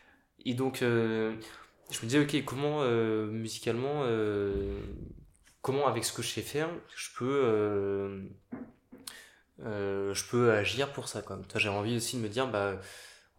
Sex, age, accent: male, 20-39, French